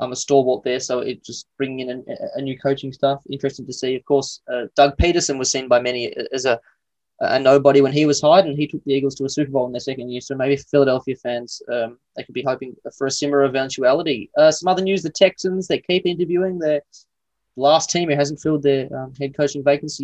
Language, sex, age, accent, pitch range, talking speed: English, male, 20-39, Australian, 135-150 Hz, 240 wpm